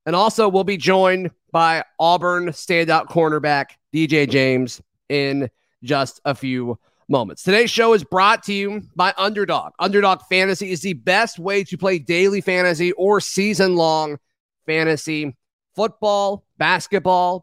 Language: English